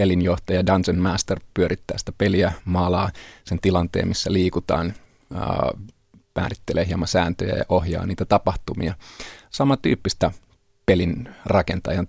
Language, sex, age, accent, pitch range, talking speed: Finnish, male, 30-49, native, 90-105 Hz, 105 wpm